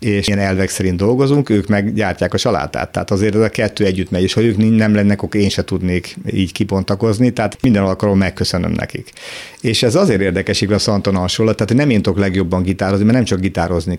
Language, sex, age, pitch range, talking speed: Hungarian, male, 50-69, 95-105 Hz, 205 wpm